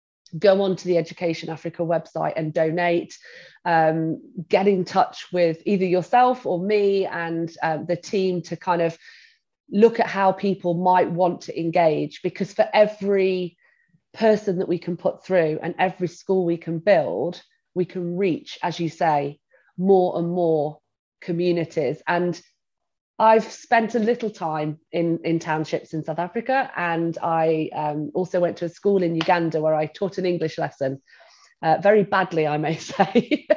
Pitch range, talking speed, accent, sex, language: 165-210 Hz, 165 wpm, British, female, English